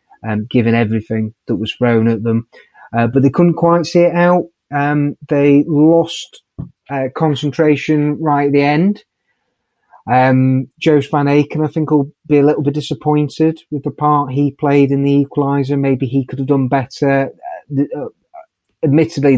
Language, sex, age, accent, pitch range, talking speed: English, male, 30-49, British, 120-150 Hz, 165 wpm